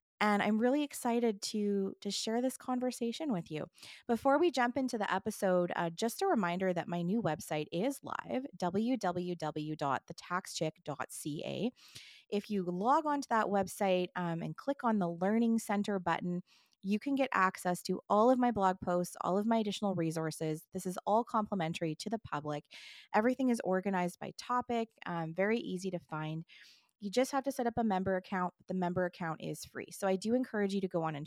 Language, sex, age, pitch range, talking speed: English, female, 20-39, 180-240 Hz, 190 wpm